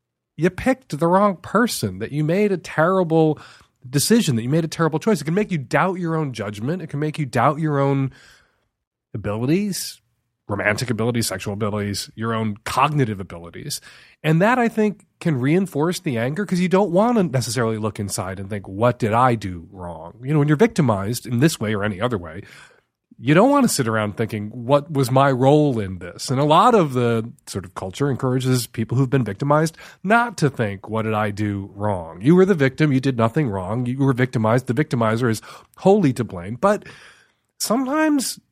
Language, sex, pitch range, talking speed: English, male, 115-180 Hz, 200 wpm